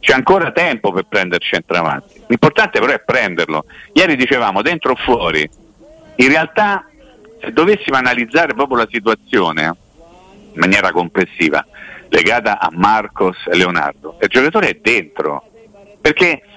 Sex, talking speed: male, 135 wpm